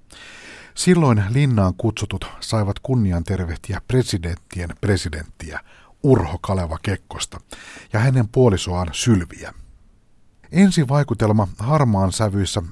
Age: 50-69